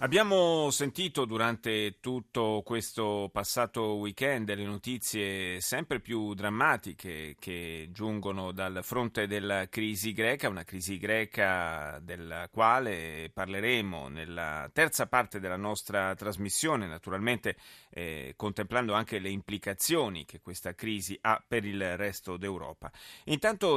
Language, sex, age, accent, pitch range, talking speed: Italian, male, 30-49, native, 95-125 Hz, 115 wpm